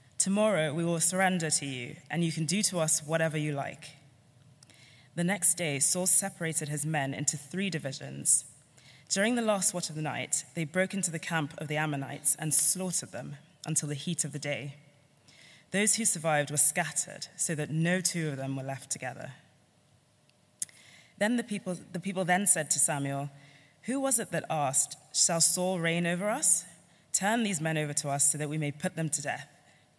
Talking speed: 190 wpm